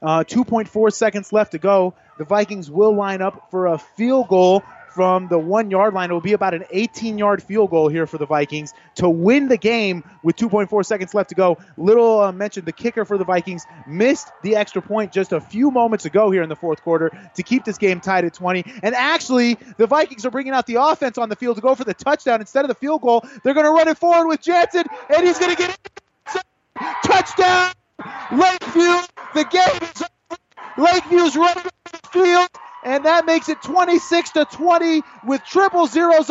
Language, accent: English, American